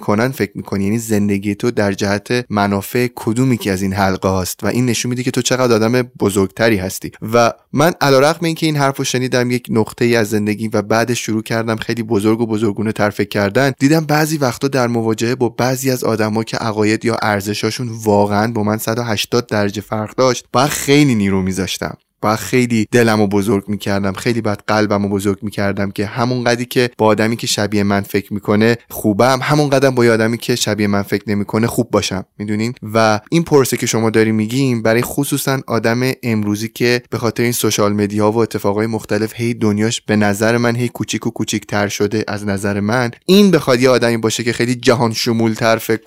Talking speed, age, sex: 195 wpm, 20-39, male